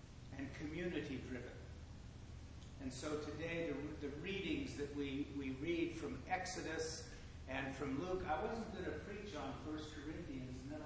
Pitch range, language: 110-150 Hz, English